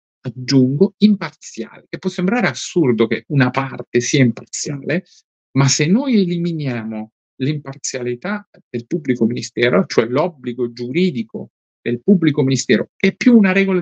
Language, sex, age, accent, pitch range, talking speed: Italian, male, 50-69, native, 125-185 Hz, 125 wpm